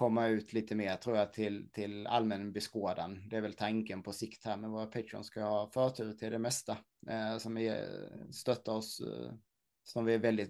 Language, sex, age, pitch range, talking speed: English, male, 30-49, 110-140 Hz, 200 wpm